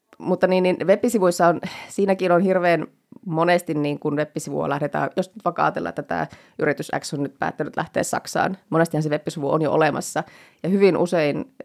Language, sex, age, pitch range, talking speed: Finnish, female, 20-39, 150-170 Hz, 170 wpm